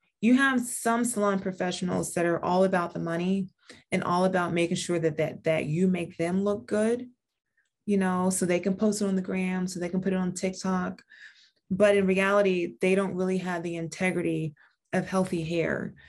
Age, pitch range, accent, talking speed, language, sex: 20-39, 170-205 Hz, American, 200 wpm, English, female